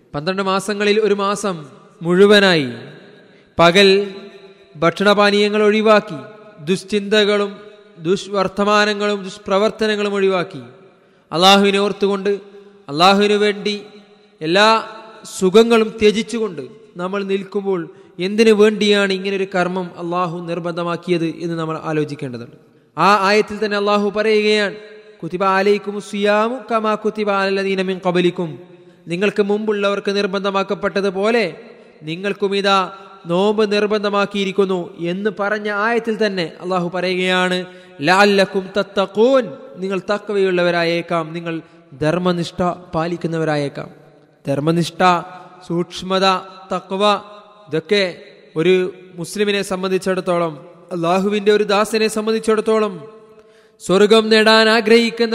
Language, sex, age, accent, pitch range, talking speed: Malayalam, male, 20-39, native, 180-210 Hz, 80 wpm